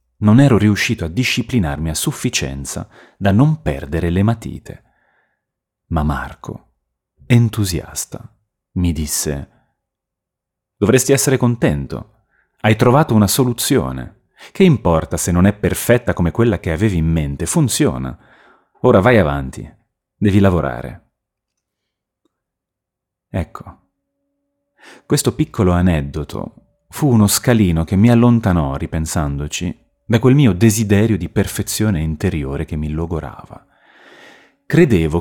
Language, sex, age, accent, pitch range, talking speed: Italian, male, 30-49, native, 80-120 Hz, 110 wpm